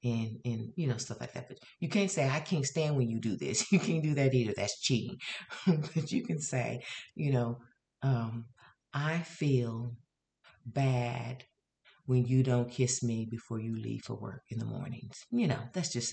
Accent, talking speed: American, 190 wpm